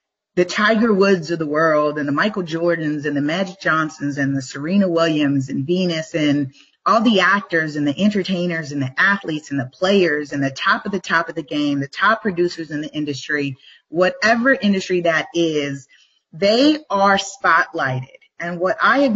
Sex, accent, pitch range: female, American, 160-200 Hz